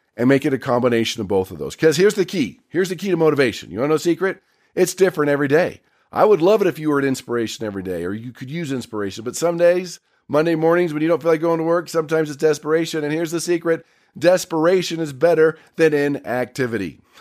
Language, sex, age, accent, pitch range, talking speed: English, male, 40-59, American, 125-175 Hz, 240 wpm